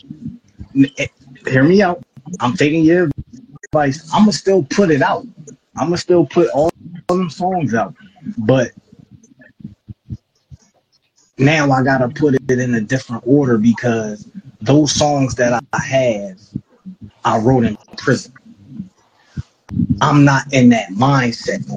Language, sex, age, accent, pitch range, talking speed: English, male, 20-39, American, 125-175 Hz, 140 wpm